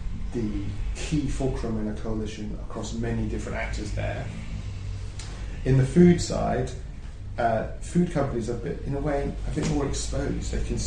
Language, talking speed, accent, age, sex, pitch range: English, 155 wpm, British, 30-49, male, 100-115 Hz